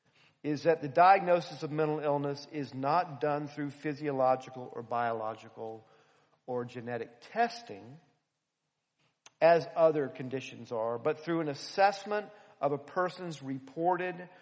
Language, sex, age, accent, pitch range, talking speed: English, male, 50-69, American, 140-175 Hz, 120 wpm